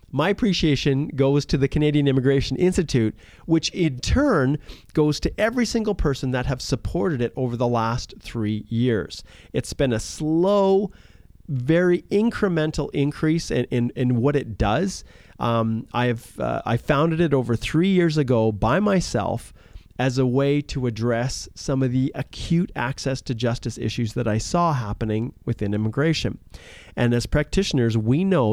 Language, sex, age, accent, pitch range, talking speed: English, male, 40-59, American, 110-150 Hz, 155 wpm